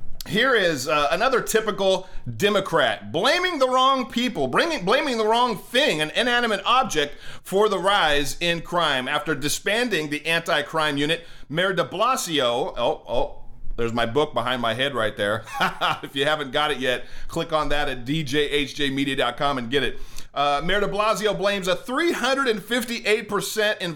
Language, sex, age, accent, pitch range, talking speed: English, male, 40-59, American, 145-200 Hz, 155 wpm